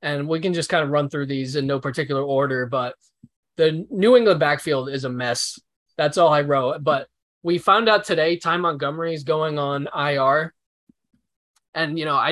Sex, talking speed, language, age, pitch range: male, 195 wpm, English, 20-39, 140-170 Hz